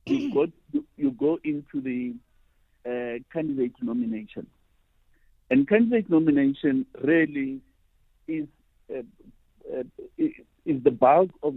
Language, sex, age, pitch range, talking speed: English, male, 50-69, 115-195 Hz, 105 wpm